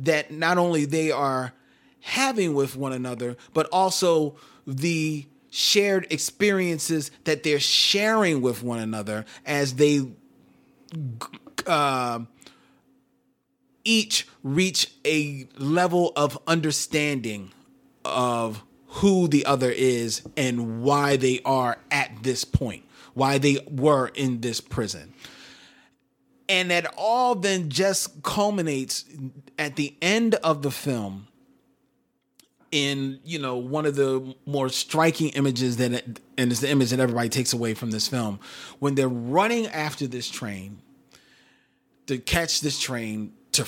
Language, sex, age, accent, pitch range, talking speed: English, male, 30-49, American, 125-160 Hz, 125 wpm